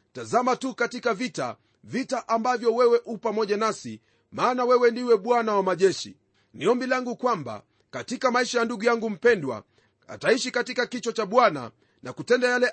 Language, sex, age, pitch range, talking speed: Swahili, male, 40-59, 200-245 Hz, 150 wpm